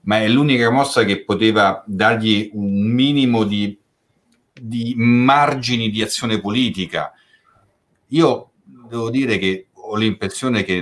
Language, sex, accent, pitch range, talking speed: Italian, male, native, 95-135 Hz, 120 wpm